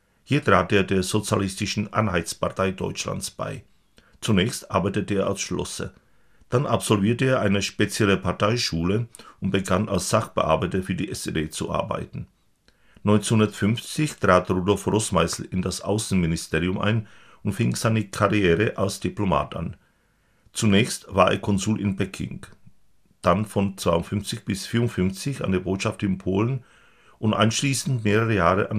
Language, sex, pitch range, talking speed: Czech, male, 95-110 Hz, 135 wpm